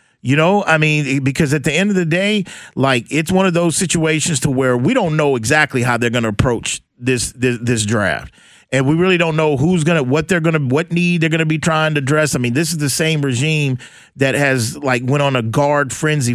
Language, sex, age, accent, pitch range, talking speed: English, male, 40-59, American, 135-165 Hz, 250 wpm